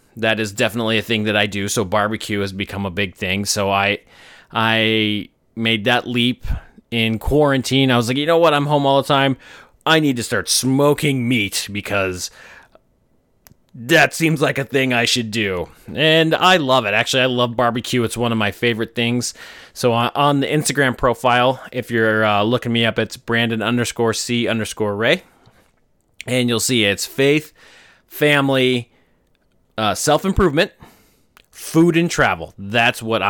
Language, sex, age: English, male, 30-49